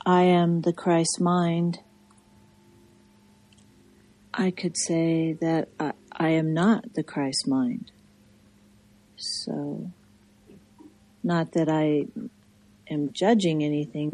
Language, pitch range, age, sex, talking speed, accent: English, 105-155 Hz, 40-59, female, 100 wpm, American